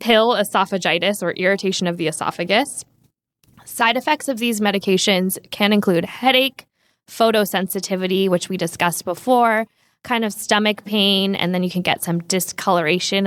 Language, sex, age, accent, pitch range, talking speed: English, female, 10-29, American, 175-220 Hz, 140 wpm